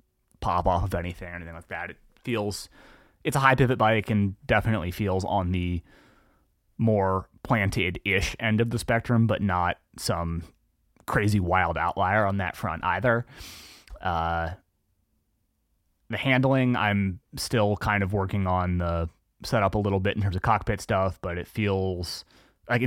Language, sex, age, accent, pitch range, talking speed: English, male, 30-49, American, 85-110 Hz, 155 wpm